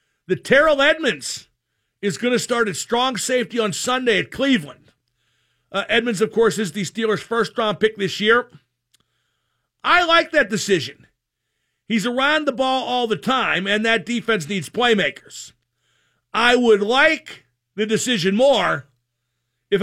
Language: English